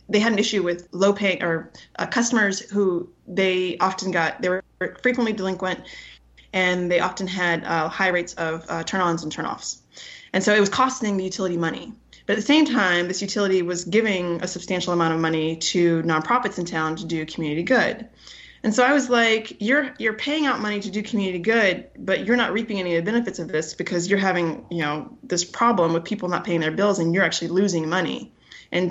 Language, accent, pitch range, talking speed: English, American, 170-215 Hz, 220 wpm